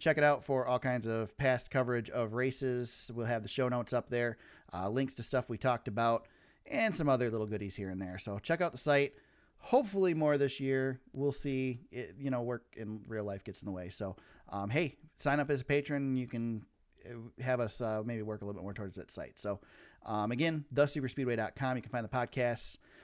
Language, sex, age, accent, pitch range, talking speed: English, male, 30-49, American, 115-145 Hz, 220 wpm